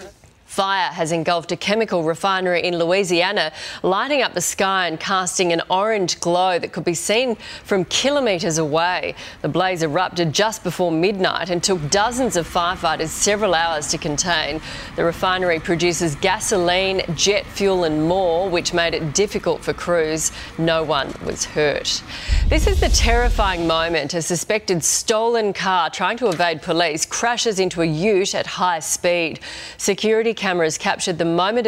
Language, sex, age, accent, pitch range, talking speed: English, female, 40-59, Australian, 170-210 Hz, 155 wpm